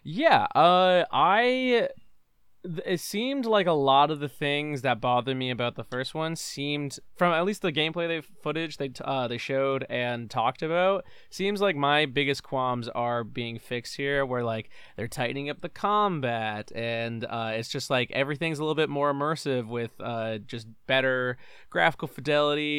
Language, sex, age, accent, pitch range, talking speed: English, male, 20-39, American, 120-145 Hz, 180 wpm